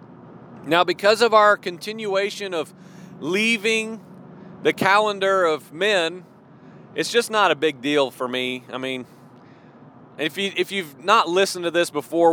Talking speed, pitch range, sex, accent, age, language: 145 wpm, 145-200 Hz, male, American, 40-59, English